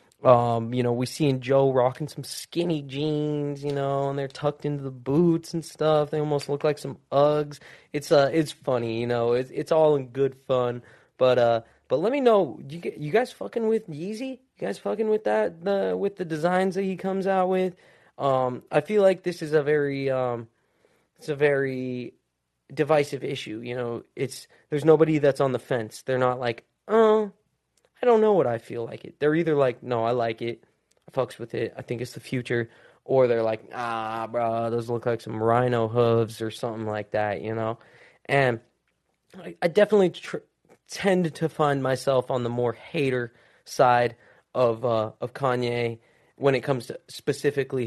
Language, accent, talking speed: English, American, 195 wpm